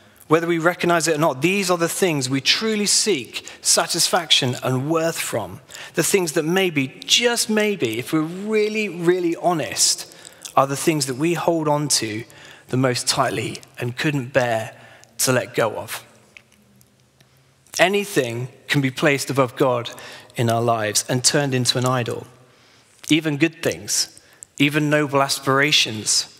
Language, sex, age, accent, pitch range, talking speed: English, male, 30-49, British, 125-165 Hz, 150 wpm